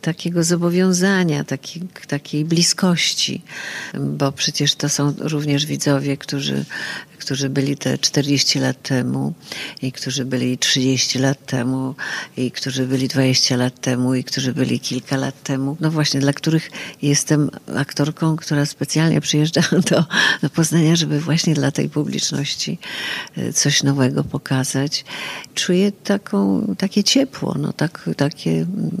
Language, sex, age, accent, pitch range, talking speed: Polish, female, 50-69, native, 135-170 Hz, 130 wpm